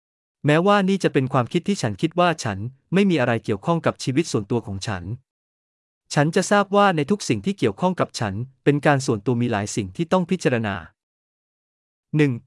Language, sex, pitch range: Thai, male, 110-160 Hz